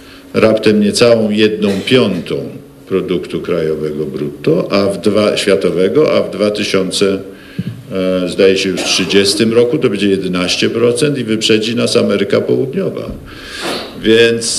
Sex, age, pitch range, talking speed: male, 50-69, 95-120 Hz, 120 wpm